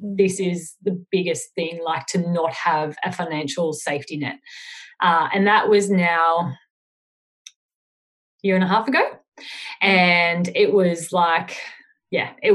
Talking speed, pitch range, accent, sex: 145 wpm, 175-205 Hz, Australian, female